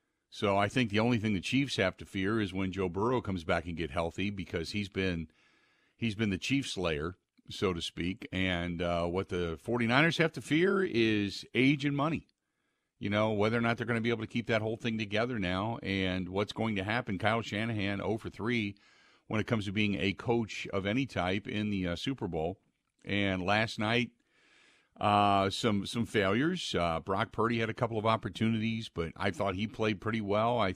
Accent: American